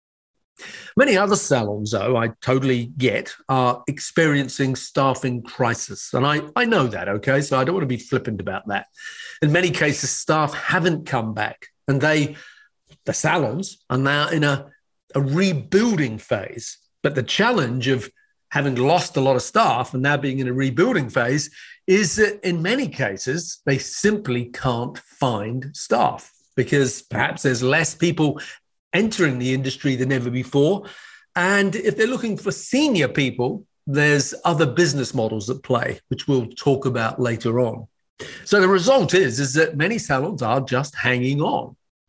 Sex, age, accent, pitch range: male, 40-59, British, 130-175 Hz